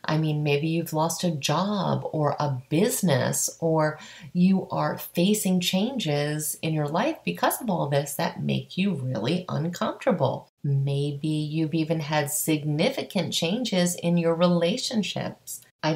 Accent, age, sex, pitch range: American, 30-49, female, 145-185 Hz